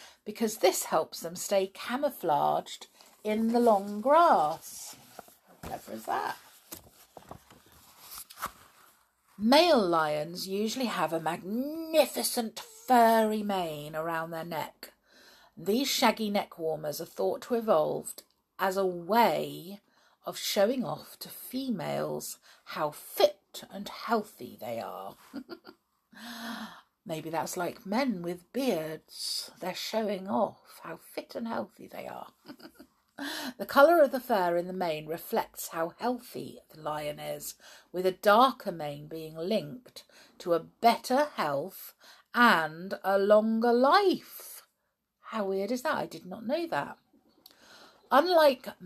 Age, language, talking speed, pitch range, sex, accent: 50-69, English, 125 wpm, 165-240 Hz, female, British